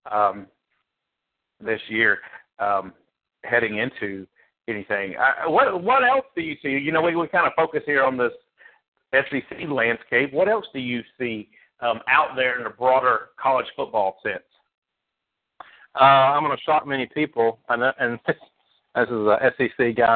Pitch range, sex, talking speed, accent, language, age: 110-130 Hz, male, 160 wpm, American, English, 50-69